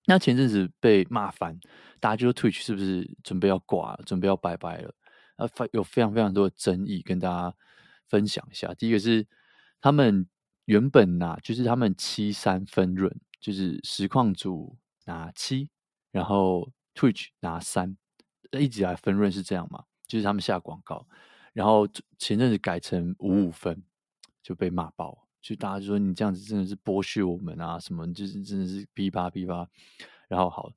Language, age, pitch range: Chinese, 20-39, 95-115 Hz